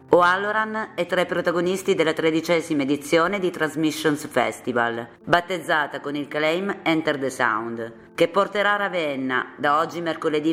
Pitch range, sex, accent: 140-175 Hz, female, native